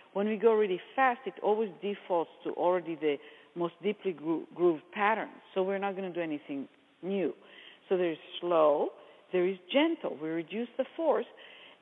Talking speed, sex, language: 170 wpm, female, English